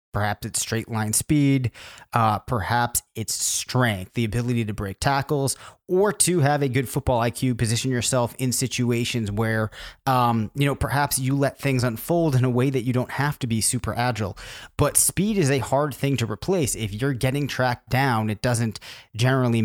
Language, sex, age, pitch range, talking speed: English, male, 30-49, 110-130 Hz, 185 wpm